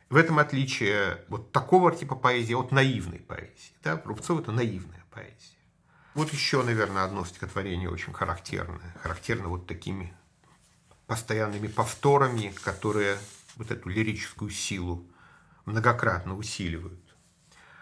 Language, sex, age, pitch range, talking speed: Russian, male, 50-69, 110-135 Hz, 115 wpm